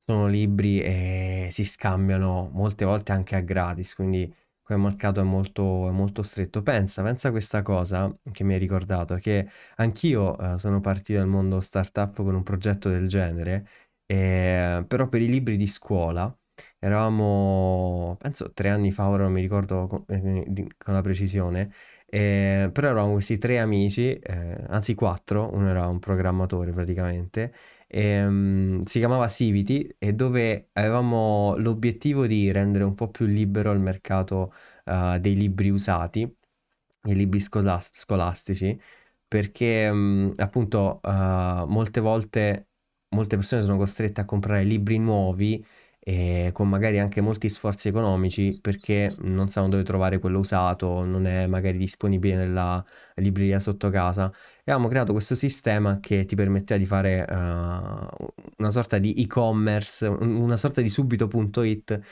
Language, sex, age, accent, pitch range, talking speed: Italian, male, 20-39, native, 95-105 Hz, 150 wpm